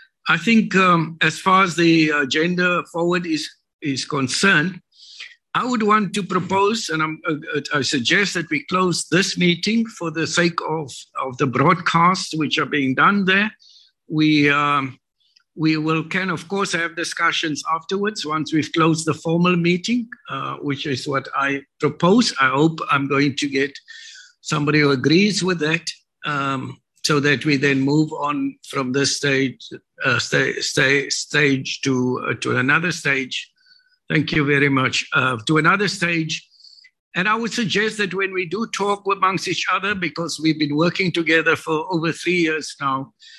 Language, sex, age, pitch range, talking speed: English, male, 60-79, 145-185 Hz, 165 wpm